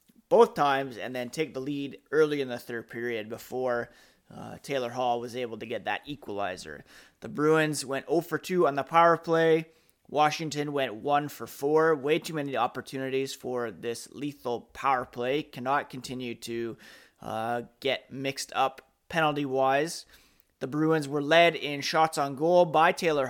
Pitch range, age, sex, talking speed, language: 125-160 Hz, 30-49, male, 165 wpm, English